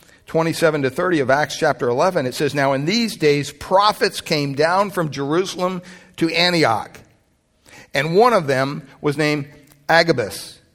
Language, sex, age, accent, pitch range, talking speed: English, male, 60-79, American, 130-170 Hz, 150 wpm